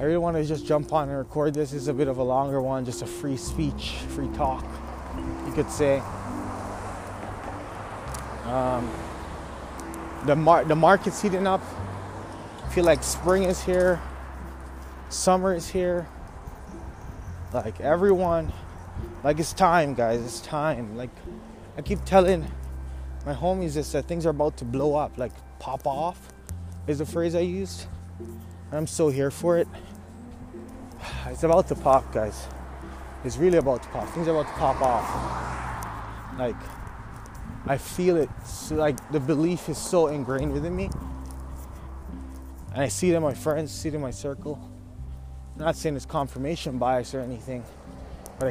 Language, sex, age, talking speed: English, male, 20-39, 150 wpm